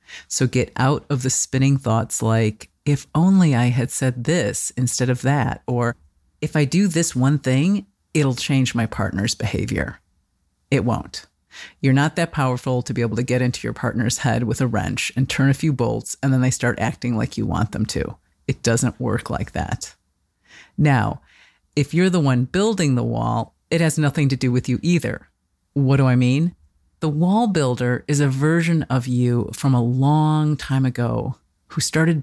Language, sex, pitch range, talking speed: English, female, 120-150 Hz, 190 wpm